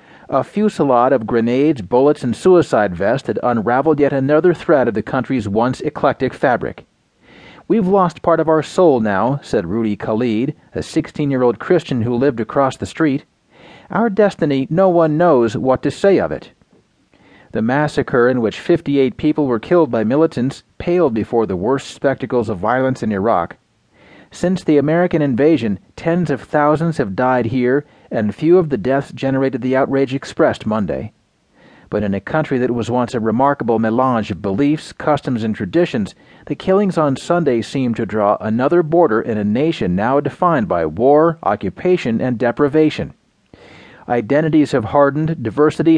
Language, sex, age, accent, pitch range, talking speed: English, male, 40-59, American, 120-160 Hz, 160 wpm